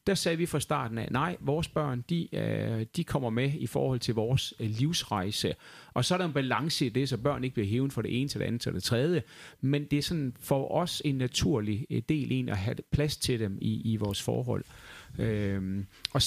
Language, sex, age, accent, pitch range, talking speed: Danish, male, 30-49, native, 115-150 Hz, 220 wpm